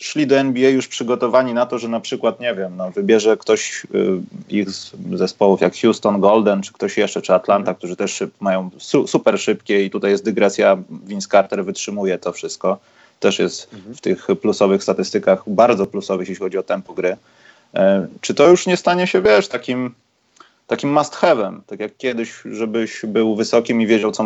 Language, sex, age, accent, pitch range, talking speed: Polish, male, 30-49, native, 100-125 Hz, 175 wpm